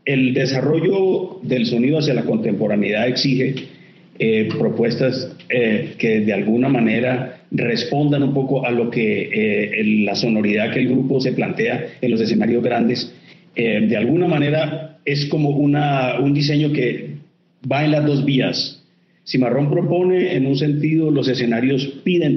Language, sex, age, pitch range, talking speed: Spanish, male, 50-69, 125-155 Hz, 155 wpm